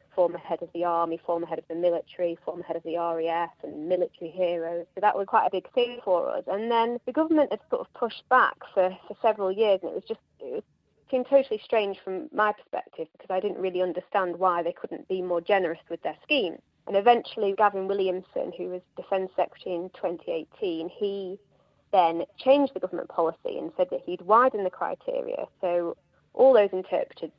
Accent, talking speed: British, 200 wpm